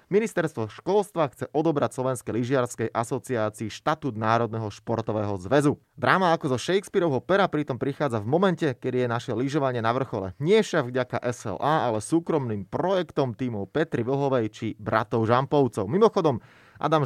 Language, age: Slovak, 30-49